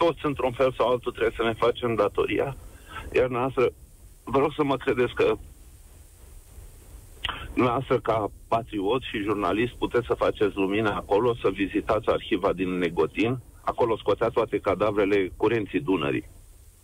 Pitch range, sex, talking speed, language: 100-160 Hz, male, 135 wpm, Romanian